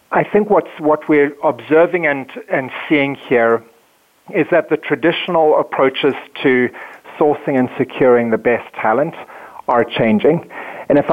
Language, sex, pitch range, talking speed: English, male, 120-145 Hz, 140 wpm